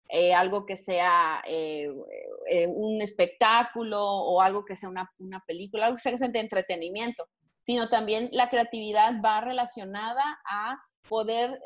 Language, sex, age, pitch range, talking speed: Spanish, female, 30-49, 200-255 Hz, 145 wpm